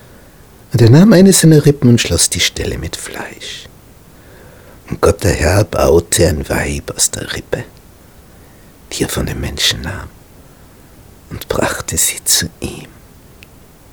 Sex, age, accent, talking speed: male, 60-79, Austrian, 140 wpm